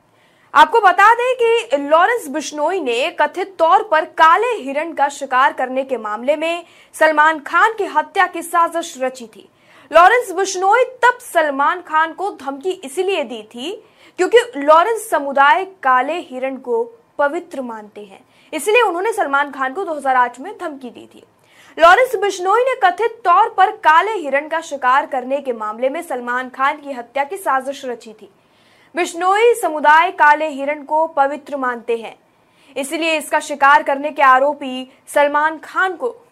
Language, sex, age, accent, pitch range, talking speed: Hindi, female, 20-39, native, 280-375 Hz, 155 wpm